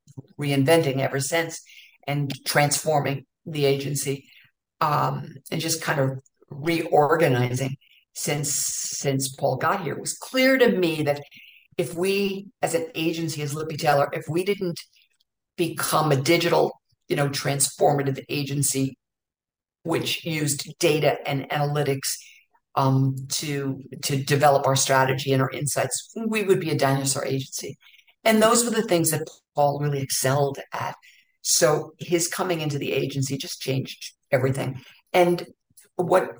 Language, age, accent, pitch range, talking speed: English, 50-69, American, 140-180 Hz, 135 wpm